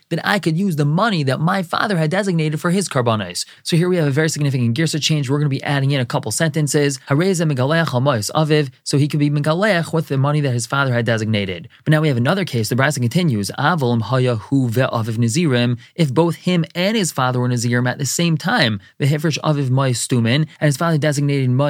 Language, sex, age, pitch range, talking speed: English, male, 20-39, 125-155 Hz, 195 wpm